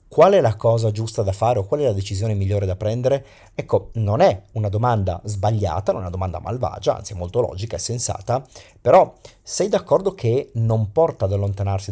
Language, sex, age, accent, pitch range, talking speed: Italian, male, 40-59, native, 100-140 Hz, 200 wpm